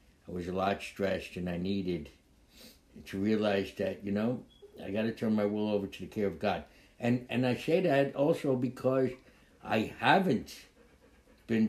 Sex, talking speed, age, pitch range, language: male, 180 wpm, 60-79, 95-110 Hz, English